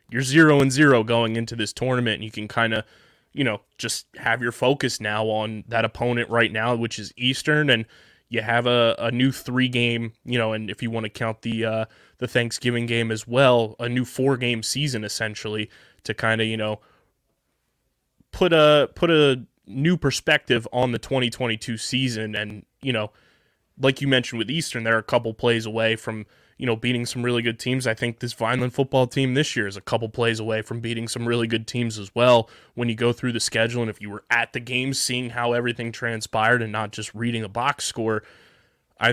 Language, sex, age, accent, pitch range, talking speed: English, male, 20-39, American, 110-125 Hz, 210 wpm